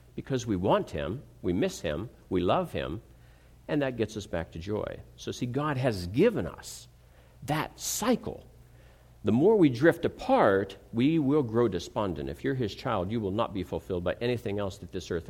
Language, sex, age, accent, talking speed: English, male, 60-79, American, 190 wpm